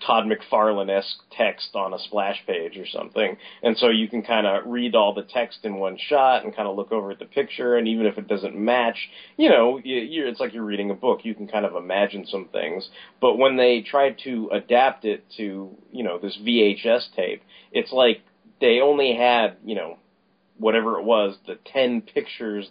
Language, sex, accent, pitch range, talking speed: English, male, American, 115-145 Hz, 205 wpm